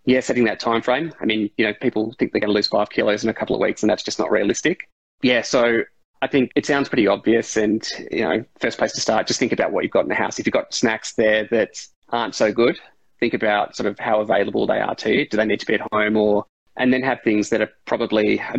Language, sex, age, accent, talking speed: English, male, 20-39, Australian, 280 wpm